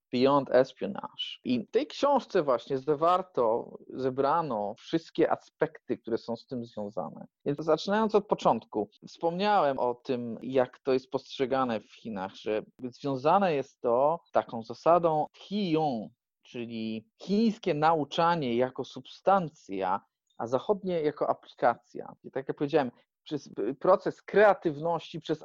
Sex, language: male, Polish